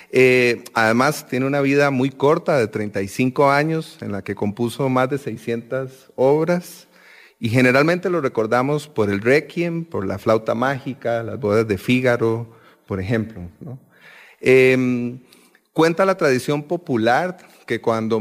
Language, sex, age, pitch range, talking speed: English, male, 40-59, 115-150 Hz, 140 wpm